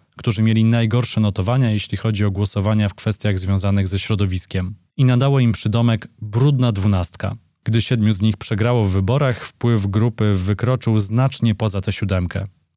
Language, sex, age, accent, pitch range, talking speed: Polish, male, 20-39, native, 100-120 Hz, 155 wpm